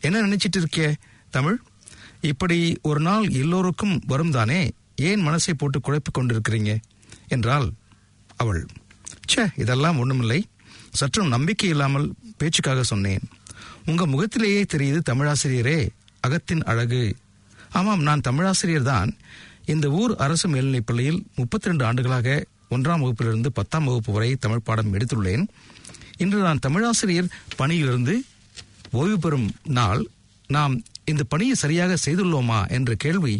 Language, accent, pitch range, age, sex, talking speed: English, Indian, 110-160 Hz, 60-79, male, 105 wpm